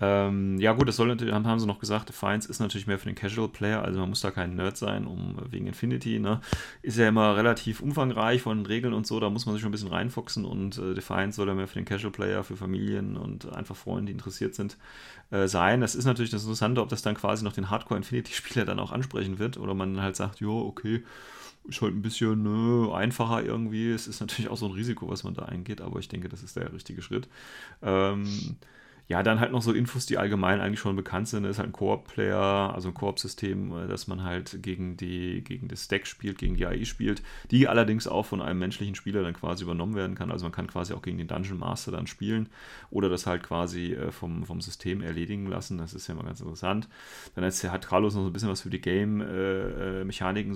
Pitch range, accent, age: 95-110 Hz, German, 30-49